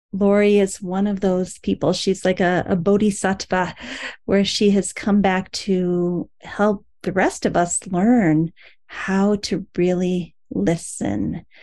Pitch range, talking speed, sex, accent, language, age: 175-210 Hz, 140 wpm, female, American, English, 40-59